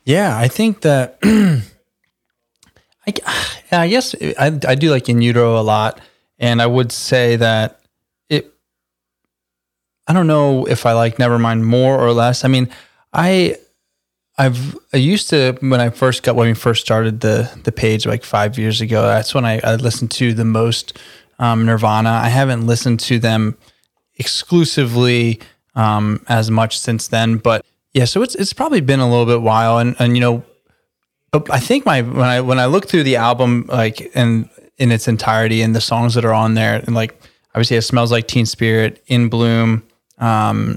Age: 20-39